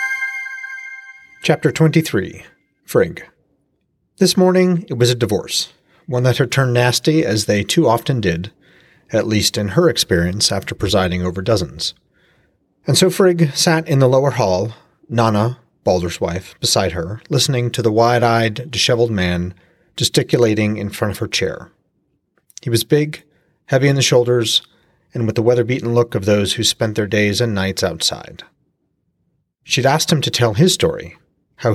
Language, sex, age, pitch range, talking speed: English, male, 30-49, 110-155 Hz, 155 wpm